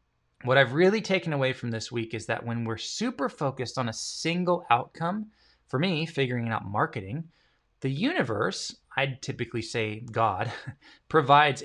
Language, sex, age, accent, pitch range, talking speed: English, male, 20-39, American, 115-165 Hz, 155 wpm